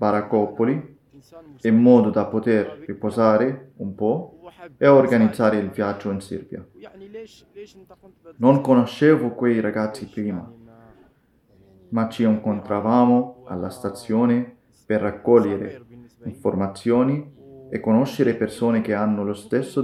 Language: Italian